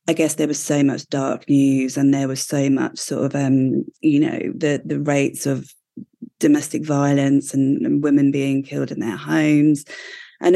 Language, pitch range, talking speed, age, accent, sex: English, 145-165 Hz, 190 wpm, 30-49, British, female